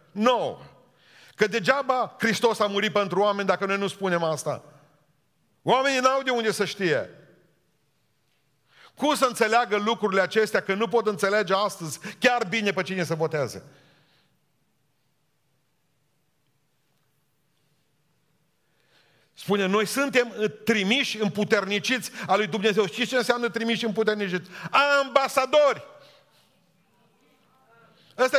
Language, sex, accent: Romanian, male, native